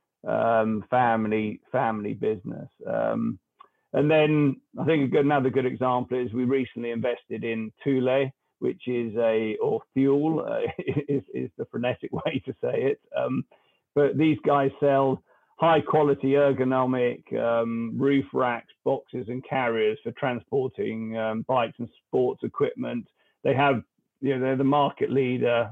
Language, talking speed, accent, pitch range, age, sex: English, 140 wpm, British, 125-145 Hz, 50-69, male